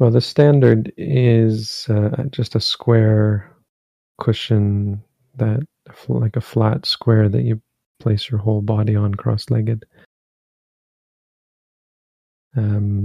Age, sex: 40-59, male